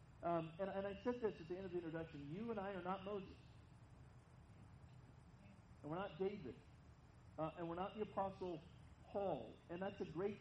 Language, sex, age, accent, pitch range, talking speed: English, male, 40-59, American, 155-195 Hz, 190 wpm